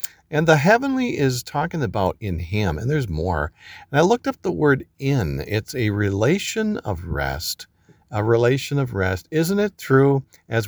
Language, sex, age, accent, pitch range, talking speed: English, male, 50-69, American, 90-130 Hz, 175 wpm